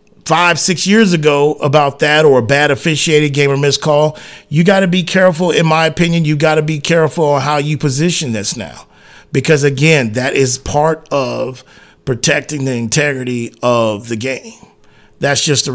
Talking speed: 180 wpm